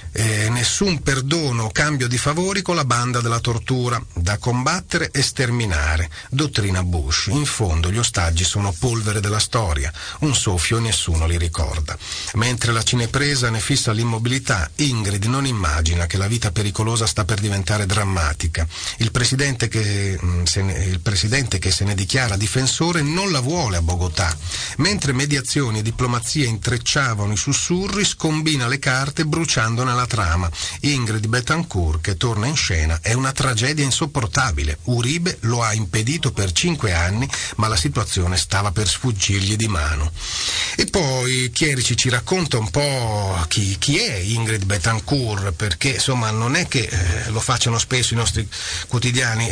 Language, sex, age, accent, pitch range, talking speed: Italian, male, 40-59, native, 95-130 Hz, 155 wpm